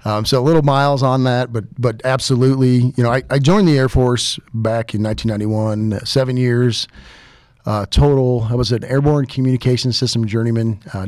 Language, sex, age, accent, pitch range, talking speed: English, male, 40-59, American, 110-130 Hz, 180 wpm